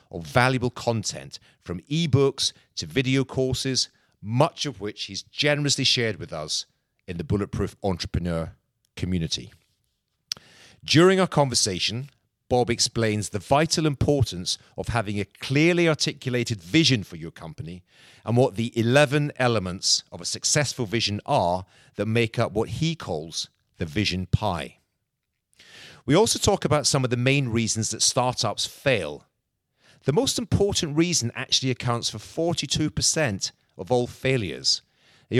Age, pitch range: 40-59, 105-140 Hz